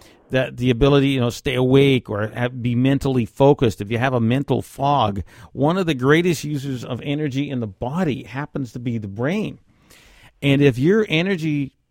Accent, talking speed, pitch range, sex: American, 180 wpm, 115-140 Hz, male